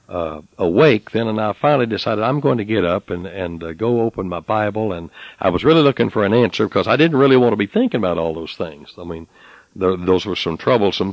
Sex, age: male, 60-79